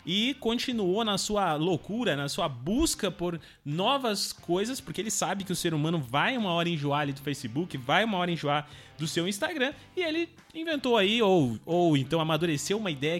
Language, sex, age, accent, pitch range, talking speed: Portuguese, male, 20-39, Brazilian, 145-200 Hz, 190 wpm